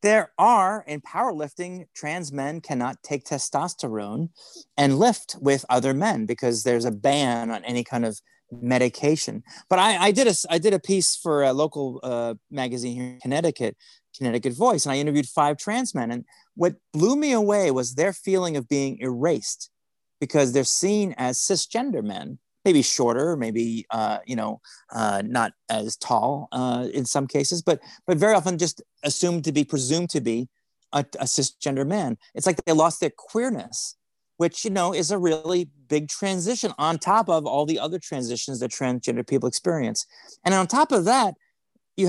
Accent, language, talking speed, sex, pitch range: American, English, 180 wpm, male, 130-185 Hz